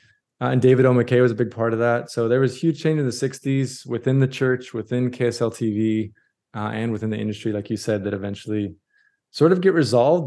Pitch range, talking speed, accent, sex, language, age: 105-125 Hz, 230 wpm, American, male, English, 20-39